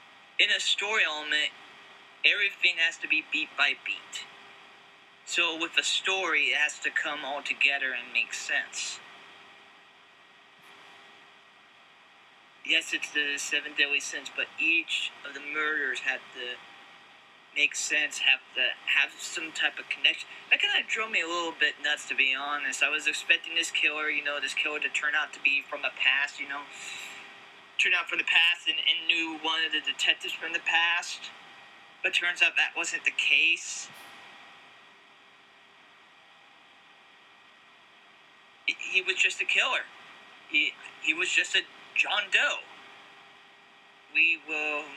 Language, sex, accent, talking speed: English, male, American, 150 wpm